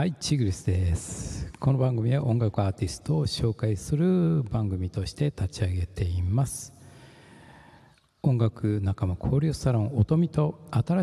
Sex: male